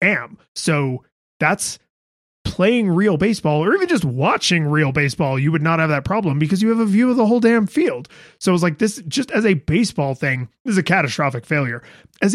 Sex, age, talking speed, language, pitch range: male, 30-49, 215 wpm, English, 145-195 Hz